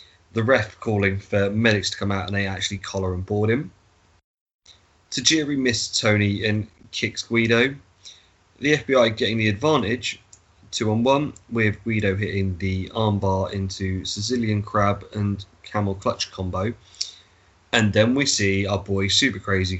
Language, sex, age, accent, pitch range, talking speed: English, male, 20-39, British, 95-115 Hz, 150 wpm